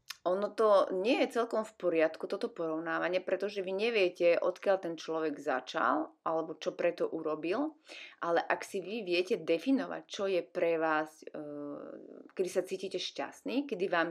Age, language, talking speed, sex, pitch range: 20-39, Slovak, 155 wpm, female, 160-225 Hz